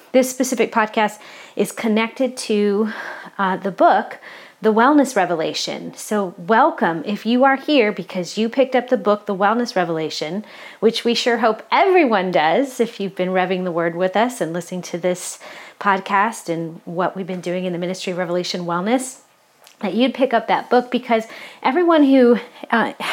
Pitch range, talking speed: 185-235 Hz, 175 wpm